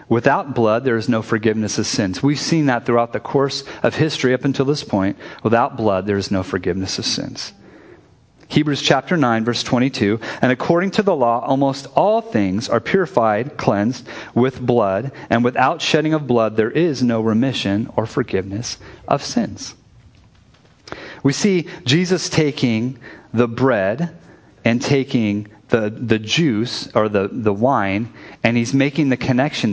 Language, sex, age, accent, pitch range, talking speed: English, male, 40-59, American, 110-140 Hz, 160 wpm